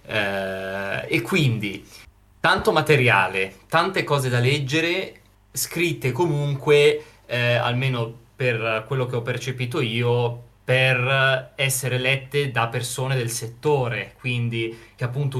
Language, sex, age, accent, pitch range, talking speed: Italian, male, 20-39, native, 115-135 Hz, 115 wpm